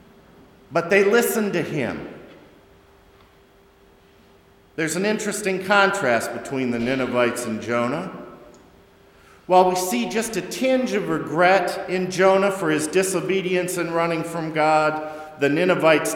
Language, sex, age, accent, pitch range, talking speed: English, male, 50-69, American, 130-190 Hz, 125 wpm